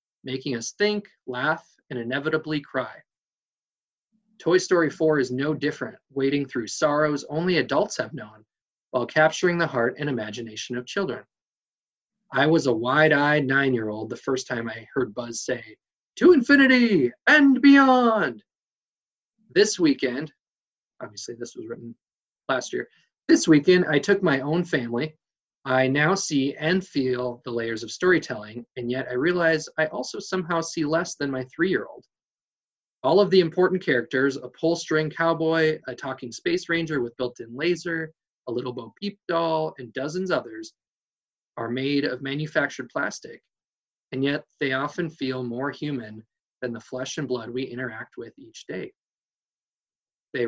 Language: English